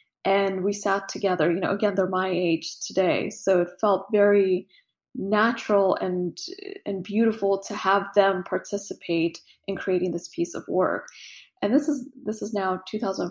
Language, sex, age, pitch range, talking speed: English, female, 20-39, 180-210 Hz, 165 wpm